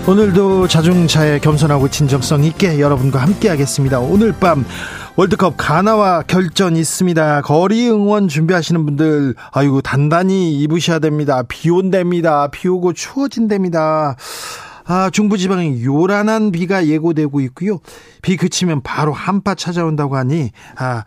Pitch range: 145-185 Hz